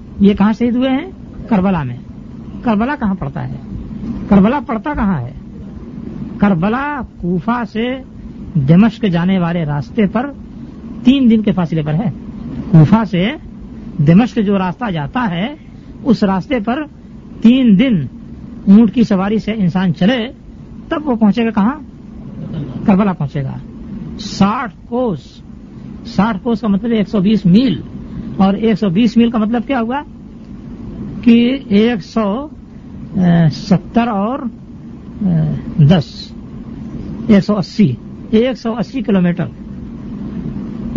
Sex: female